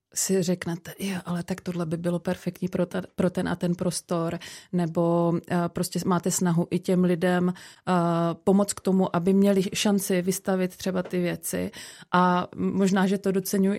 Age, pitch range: 30-49, 185-200 Hz